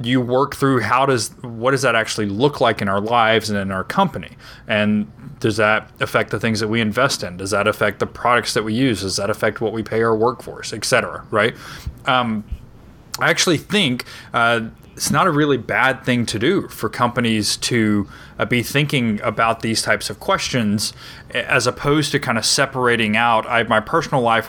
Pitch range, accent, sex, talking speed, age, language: 105-125 Hz, American, male, 200 wpm, 20-39, English